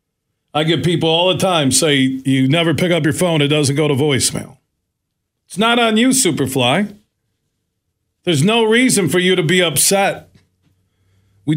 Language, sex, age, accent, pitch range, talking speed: English, male, 40-59, American, 120-160 Hz, 165 wpm